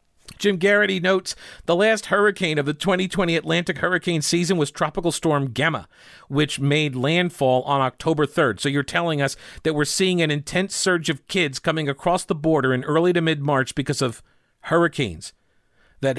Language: English